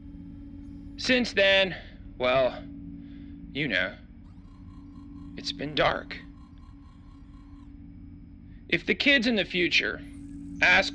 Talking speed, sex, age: 80 wpm, male, 30-49